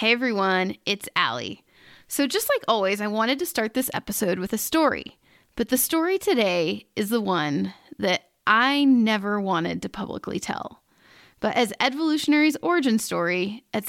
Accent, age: American, 20-39